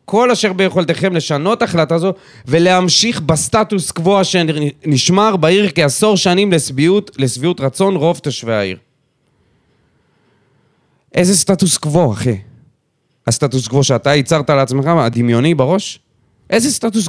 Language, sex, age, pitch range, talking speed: Hebrew, male, 30-49, 140-195 Hz, 115 wpm